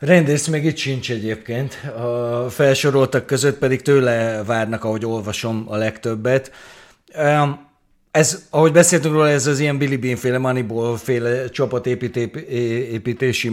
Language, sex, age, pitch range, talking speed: Hungarian, male, 30-49, 115-145 Hz, 115 wpm